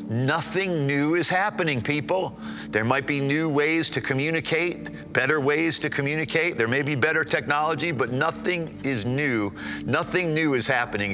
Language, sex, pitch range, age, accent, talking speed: English, male, 90-150 Hz, 50-69, American, 155 wpm